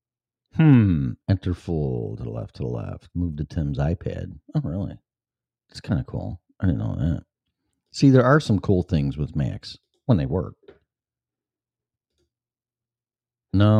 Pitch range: 80-120 Hz